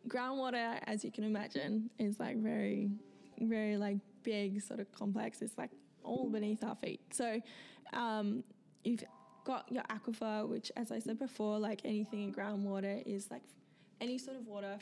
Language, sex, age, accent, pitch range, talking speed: English, female, 10-29, Australian, 170-220 Hz, 165 wpm